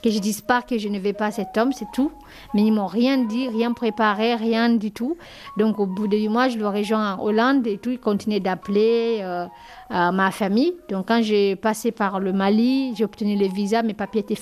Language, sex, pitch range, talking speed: French, female, 205-235 Hz, 235 wpm